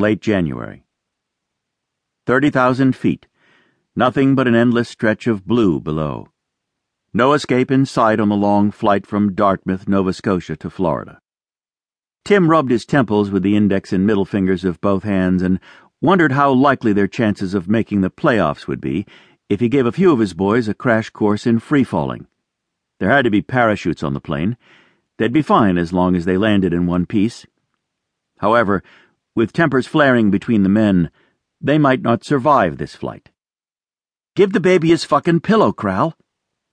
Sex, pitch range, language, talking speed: male, 95-130 Hz, English, 170 wpm